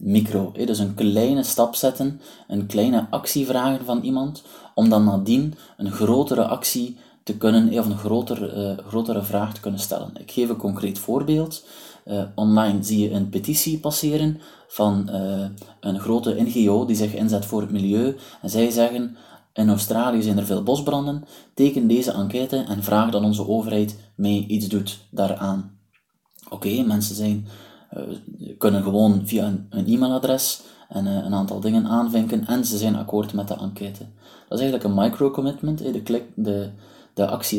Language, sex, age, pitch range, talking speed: Dutch, male, 20-39, 100-125 Hz, 165 wpm